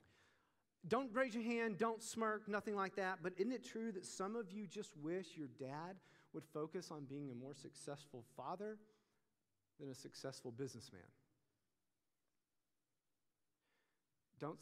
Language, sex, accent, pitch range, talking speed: English, male, American, 115-150 Hz, 140 wpm